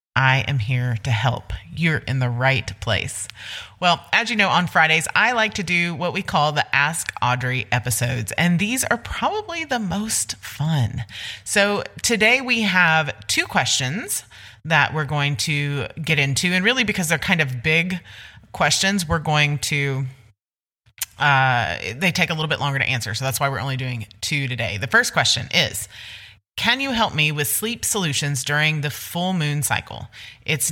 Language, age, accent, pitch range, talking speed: English, 30-49, American, 120-165 Hz, 180 wpm